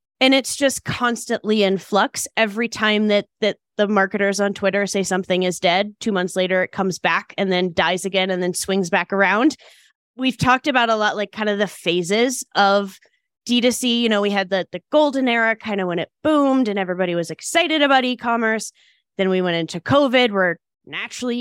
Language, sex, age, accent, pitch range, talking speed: English, female, 10-29, American, 190-235 Hz, 200 wpm